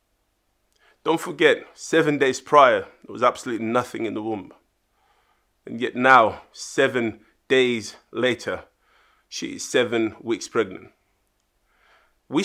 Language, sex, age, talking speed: English, male, 30-49, 115 wpm